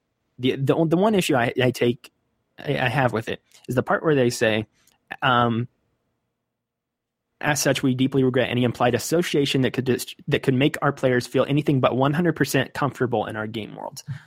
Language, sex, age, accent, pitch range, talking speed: English, male, 20-39, American, 120-150 Hz, 185 wpm